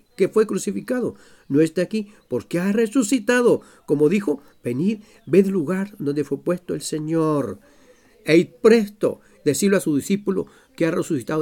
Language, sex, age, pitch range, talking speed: Spanish, male, 50-69, 150-245 Hz, 145 wpm